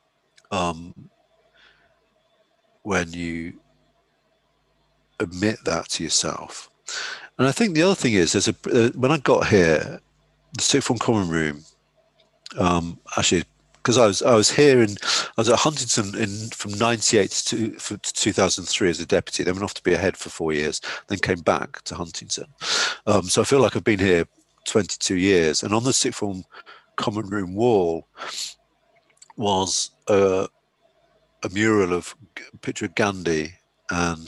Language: English